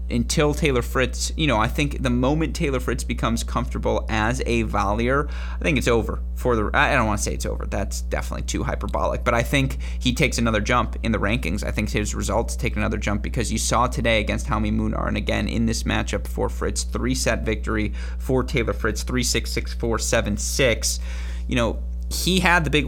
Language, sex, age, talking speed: English, male, 30-49, 220 wpm